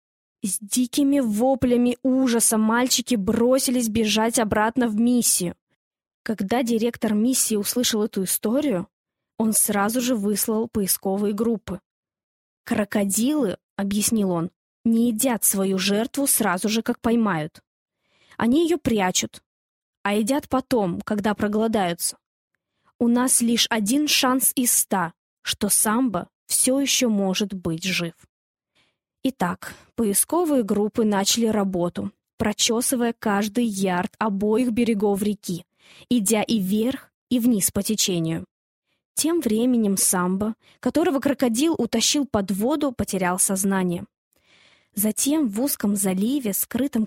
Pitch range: 200-250 Hz